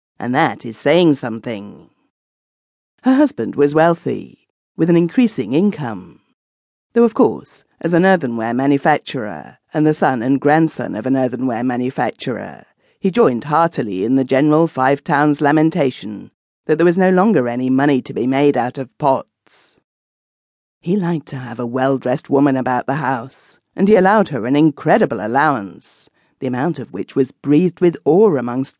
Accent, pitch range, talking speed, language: British, 130-165 Hz, 160 wpm, English